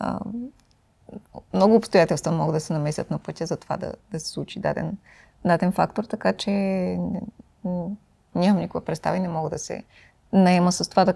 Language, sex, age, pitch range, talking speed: Bulgarian, female, 20-39, 180-220 Hz, 160 wpm